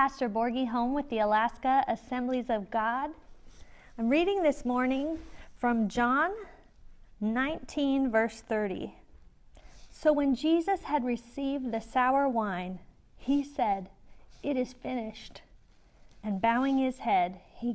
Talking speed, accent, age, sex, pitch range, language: 120 wpm, American, 40-59, female, 225-285 Hz, English